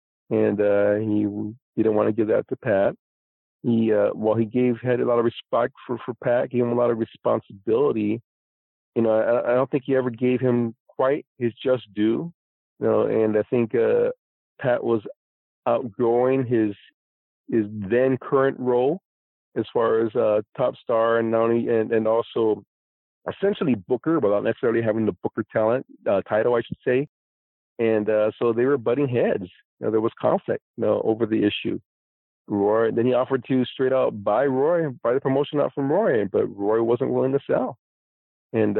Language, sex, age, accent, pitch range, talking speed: English, male, 50-69, American, 105-125 Hz, 190 wpm